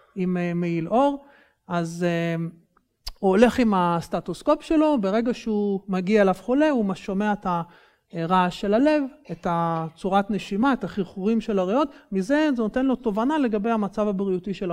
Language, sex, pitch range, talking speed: Hebrew, male, 185-260 Hz, 145 wpm